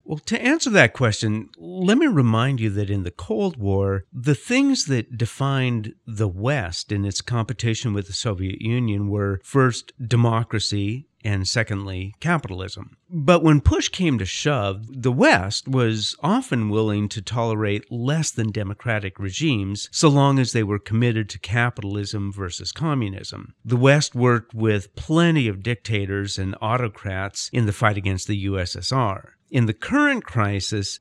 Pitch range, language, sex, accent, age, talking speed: 105-135 Hz, English, male, American, 50-69, 155 wpm